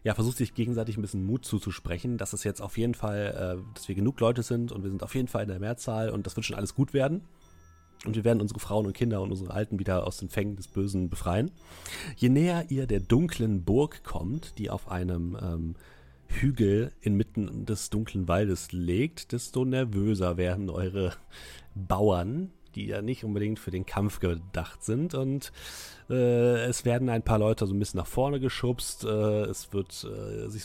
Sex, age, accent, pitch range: male, 40-59, German, 95-115 Hz